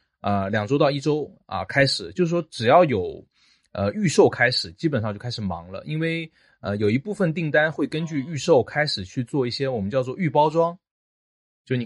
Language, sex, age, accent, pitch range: Chinese, male, 30-49, native, 105-150 Hz